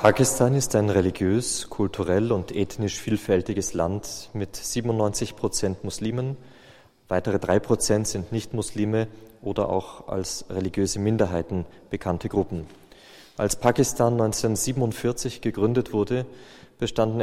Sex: male